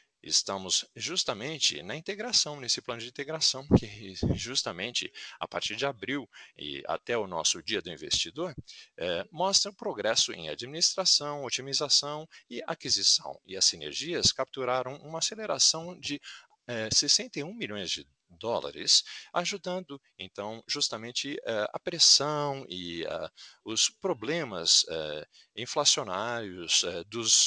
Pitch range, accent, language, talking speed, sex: 115-185 Hz, Brazilian, Portuguese, 115 wpm, male